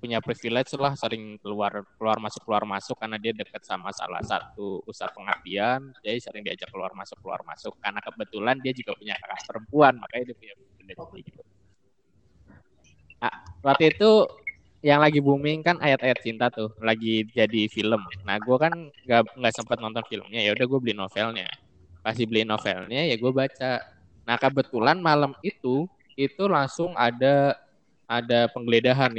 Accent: native